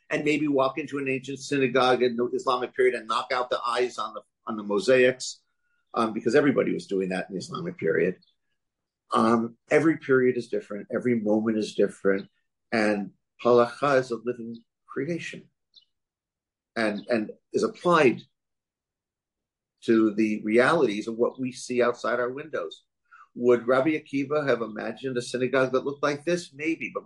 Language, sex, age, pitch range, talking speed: English, male, 50-69, 120-170 Hz, 160 wpm